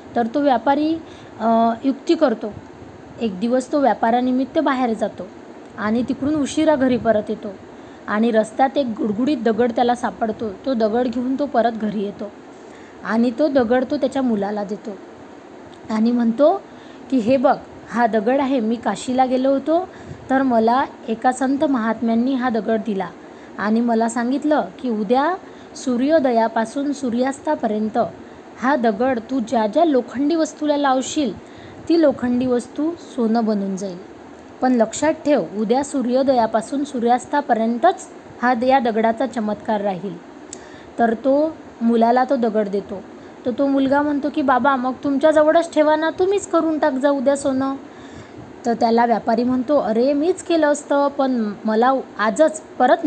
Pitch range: 230-295 Hz